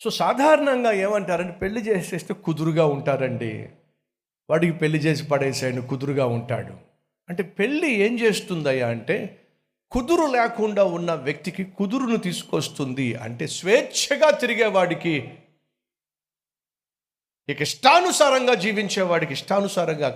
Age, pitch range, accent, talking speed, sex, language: 50-69, 135-190 Hz, native, 90 wpm, male, Telugu